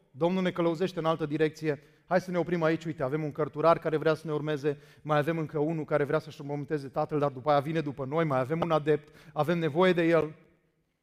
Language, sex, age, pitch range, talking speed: Romanian, male, 30-49, 150-195 Hz, 235 wpm